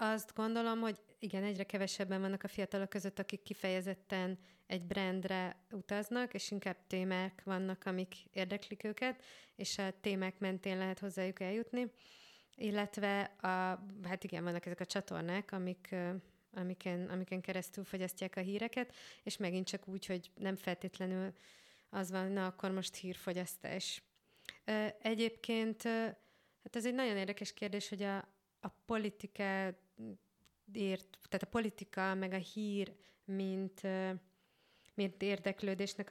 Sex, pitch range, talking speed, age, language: female, 185-210 Hz, 130 wpm, 20-39, Hungarian